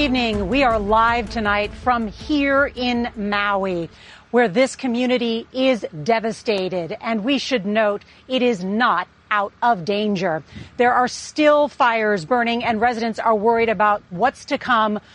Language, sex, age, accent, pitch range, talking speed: English, female, 40-59, American, 200-240 Hz, 150 wpm